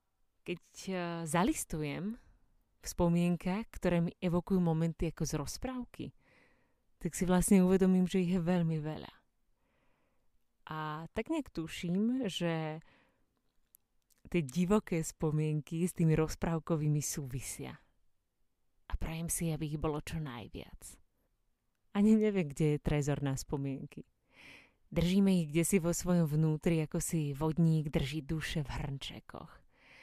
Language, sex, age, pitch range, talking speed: Slovak, female, 30-49, 150-180 Hz, 120 wpm